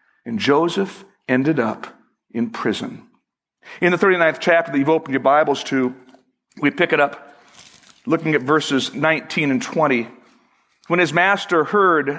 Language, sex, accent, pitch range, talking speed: English, male, American, 145-195 Hz, 150 wpm